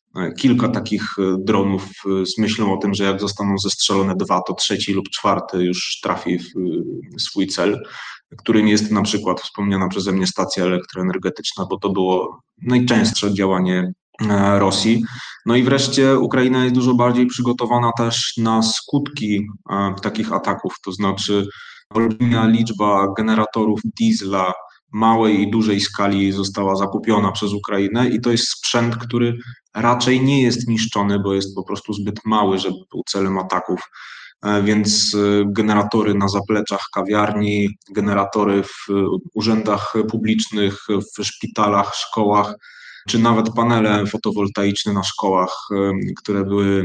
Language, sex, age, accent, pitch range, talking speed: Polish, male, 20-39, native, 100-115 Hz, 130 wpm